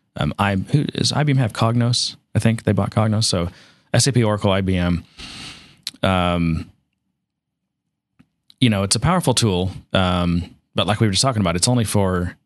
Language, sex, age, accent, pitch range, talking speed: English, male, 30-49, American, 95-125 Hz, 165 wpm